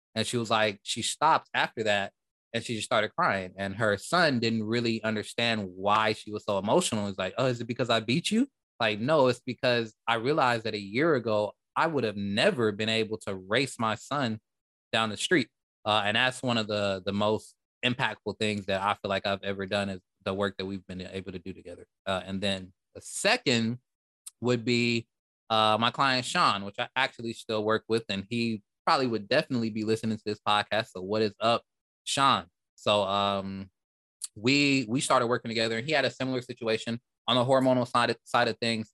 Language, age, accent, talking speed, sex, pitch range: English, 20-39, American, 210 wpm, male, 105-120 Hz